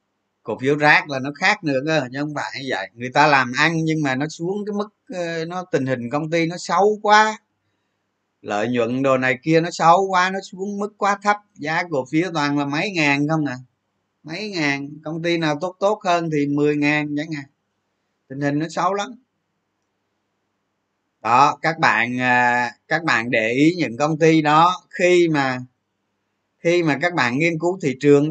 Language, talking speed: Vietnamese, 195 wpm